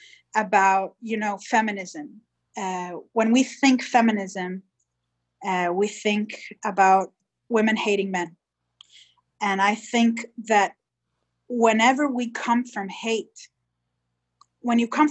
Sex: female